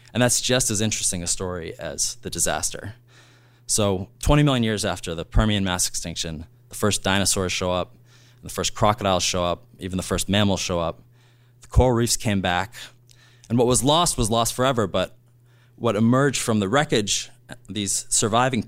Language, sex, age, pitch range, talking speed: English, male, 20-39, 95-120 Hz, 175 wpm